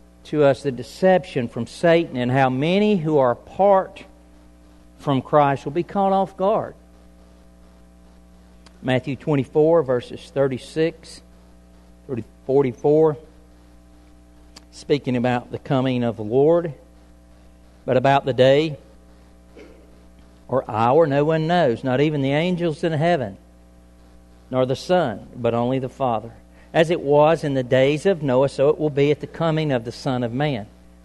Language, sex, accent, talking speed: English, male, American, 145 wpm